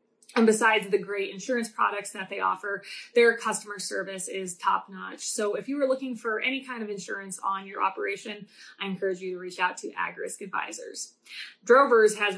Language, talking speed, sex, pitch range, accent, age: English, 190 wpm, female, 200-250 Hz, American, 20-39